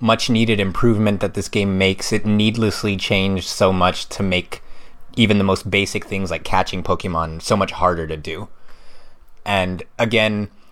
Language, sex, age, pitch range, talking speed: English, male, 20-39, 90-110 Hz, 160 wpm